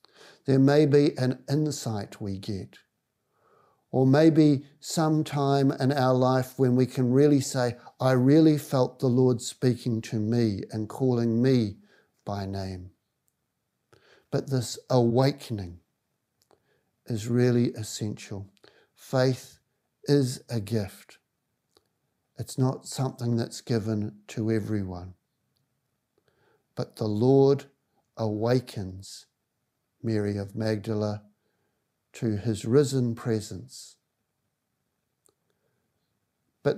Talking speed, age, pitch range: 100 wpm, 60-79, 110-135 Hz